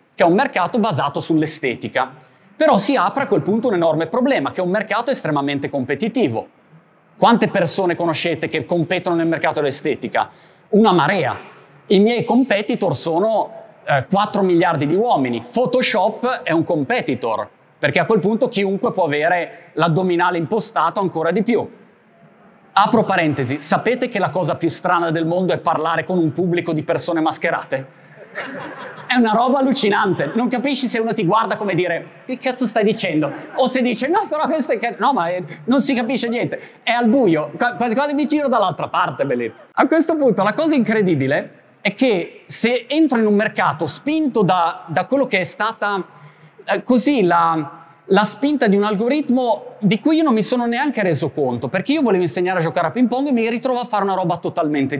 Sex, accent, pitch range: male, native, 170-245 Hz